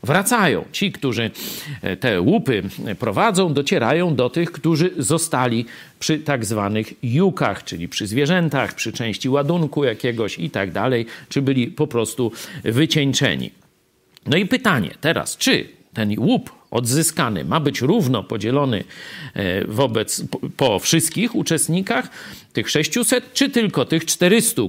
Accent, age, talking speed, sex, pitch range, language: native, 50-69, 125 wpm, male, 115-175 Hz, Polish